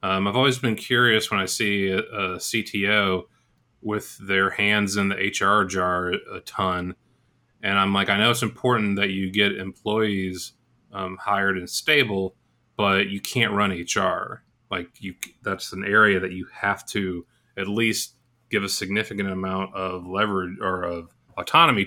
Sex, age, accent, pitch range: male, 30-49, American, 95-120 Hz